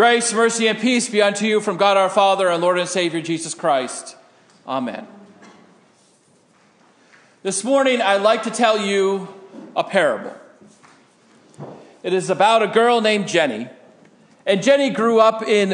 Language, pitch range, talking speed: English, 175-225 Hz, 150 wpm